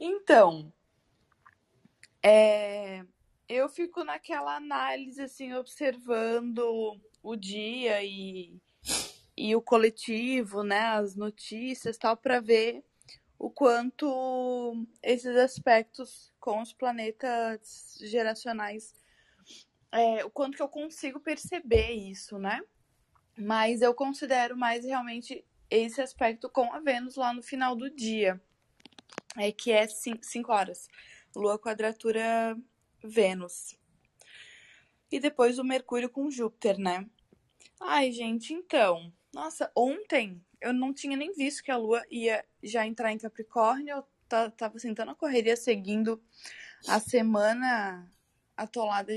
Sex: female